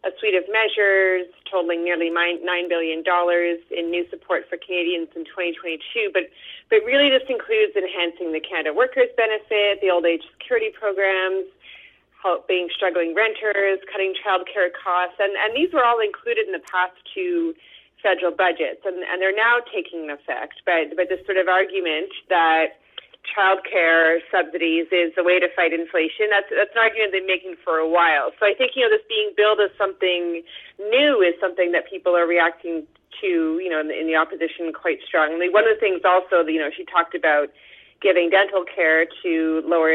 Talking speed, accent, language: 185 wpm, American, English